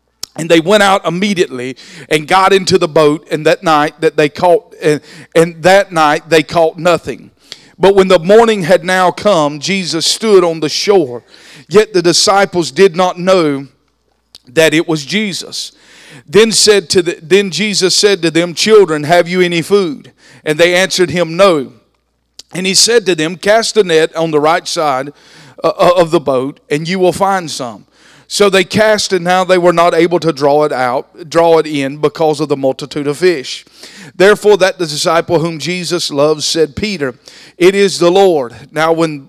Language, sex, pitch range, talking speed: English, male, 155-190 Hz, 185 wpm